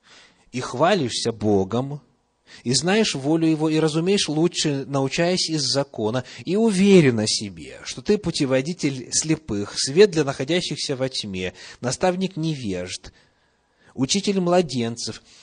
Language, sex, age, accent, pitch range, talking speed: Russian, male, 30-49, native, 110-170 Hz, 115 wpm